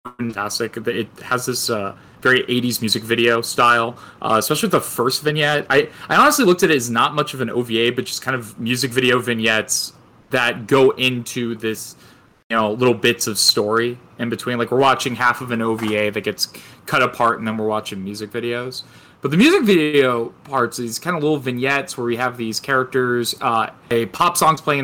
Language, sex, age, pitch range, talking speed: English, male, 20-39, 115-130 Hz, 205 wpm